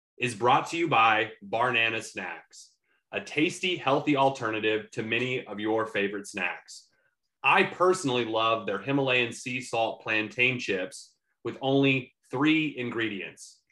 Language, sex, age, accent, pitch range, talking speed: English, male, 30-49, American, 115-150 Hz, 130 wpm